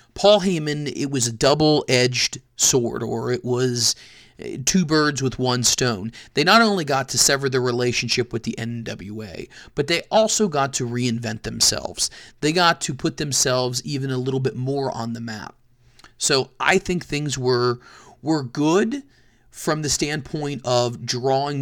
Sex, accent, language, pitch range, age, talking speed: male, American, English, 120-150 Hz, 40-59, 160 wpm